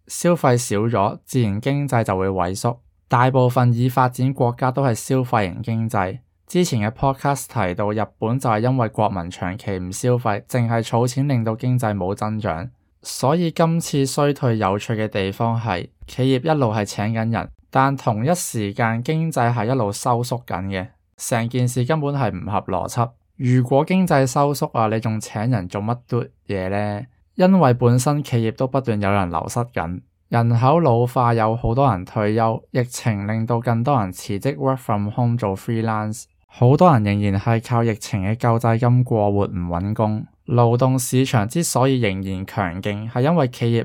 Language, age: Chinese, 20-39